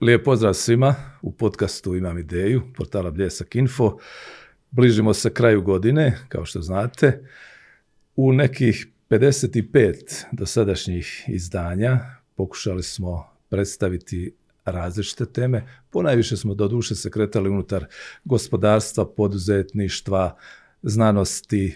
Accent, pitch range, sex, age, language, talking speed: native, 95-120 Hz, male, 50-69, Croatian, 95 wpm